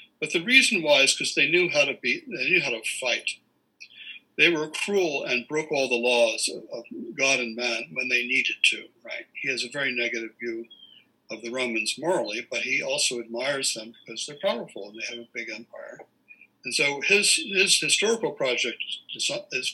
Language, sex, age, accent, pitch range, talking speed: English, male, 60-79, American, 115-150 Hz, 195 wpm